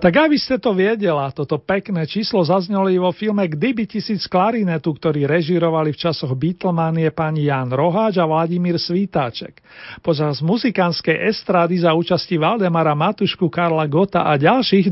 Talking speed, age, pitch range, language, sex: 145 wpm, 40-59, 165-210 Hz, Slovak, male